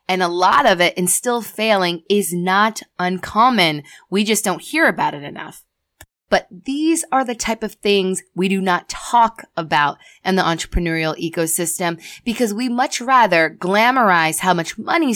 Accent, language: American, English